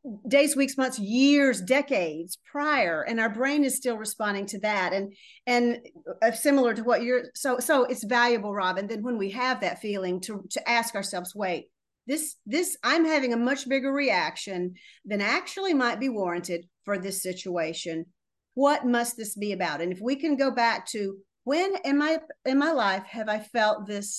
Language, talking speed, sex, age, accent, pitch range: English, 185 wpm, female, 50-69, American, 205-280 Hz